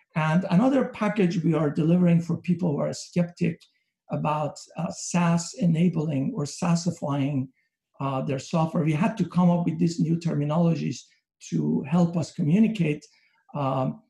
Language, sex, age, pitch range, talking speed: English, male, 60-79, 155-195 Hz, 145 wpm